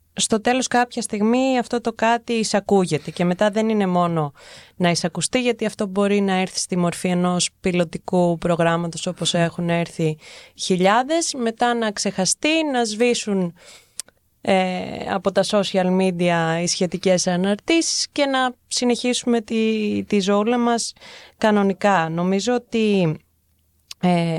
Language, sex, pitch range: Greek, female, 180-235 Hz